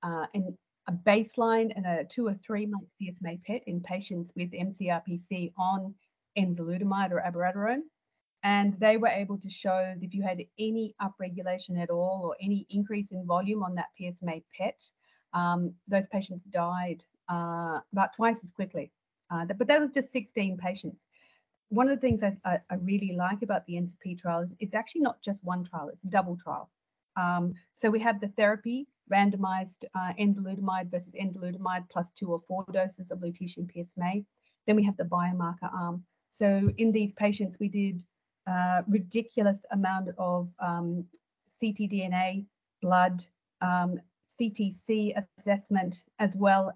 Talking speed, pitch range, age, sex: 160 wpm, 180-205 Hz, 40-59, female